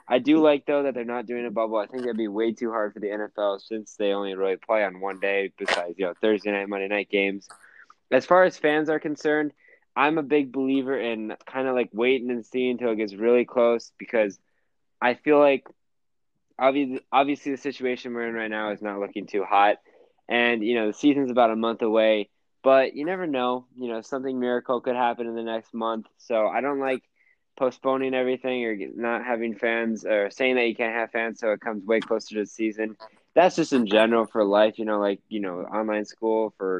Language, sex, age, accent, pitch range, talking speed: English, male, 20-39, American, 105-130 Hz, 225 wpm